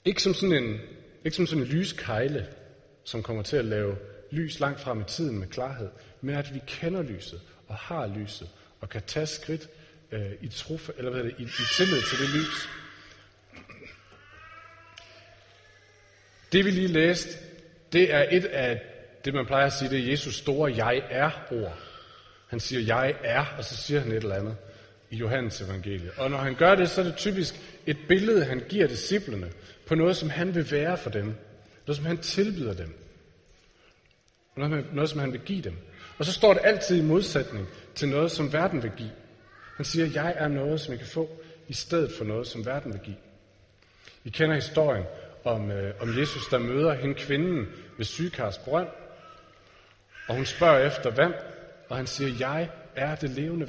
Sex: male